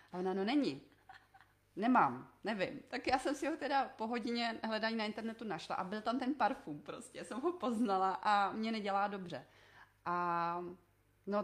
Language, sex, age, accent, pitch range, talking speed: Czech, female, 30-49, native, 180-225 Hz, 175 wpm